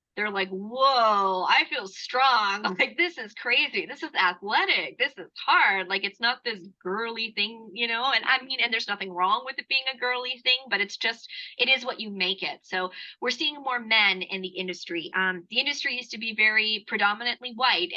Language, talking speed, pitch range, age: English, 210 wpm, 200-245 Hz, 20-39